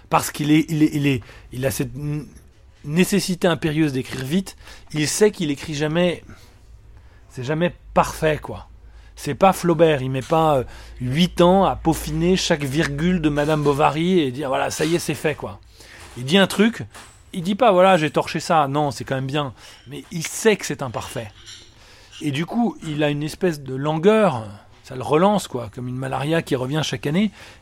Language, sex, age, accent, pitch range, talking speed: French, male, 30-49, French, 130-175 Hz, 200 wpm